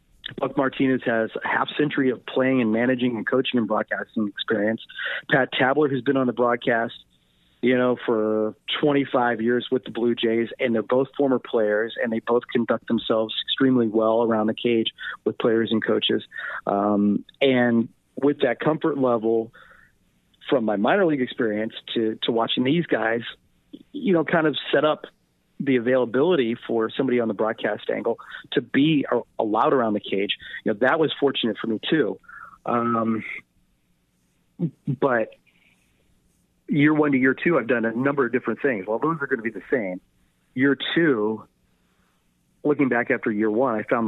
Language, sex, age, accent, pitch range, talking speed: English, male, 40-59, American, 110-135 Hz, 170 wpm